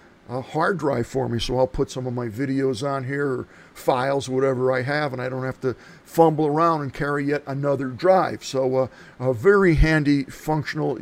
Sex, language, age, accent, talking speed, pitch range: male, English, 50-69, American, 200 wpm, 130-155 Hz